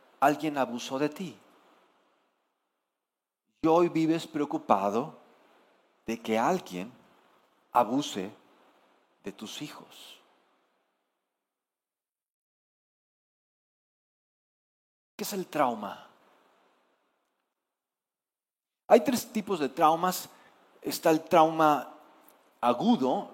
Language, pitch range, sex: Spanish, 135-175 Hz, male